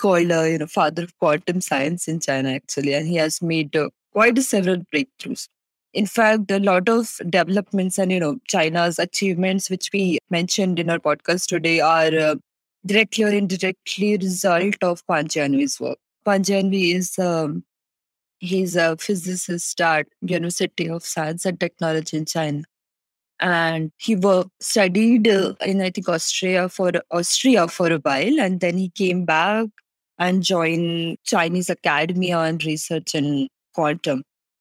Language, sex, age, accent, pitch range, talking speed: English, female, 20-39, Indian, 160-190 Hz, 155 wpm